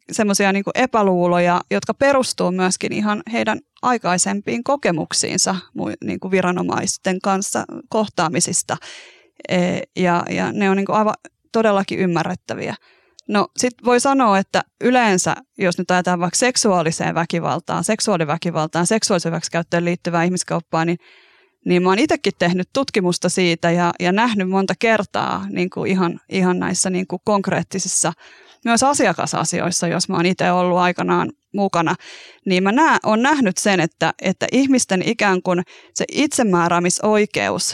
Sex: female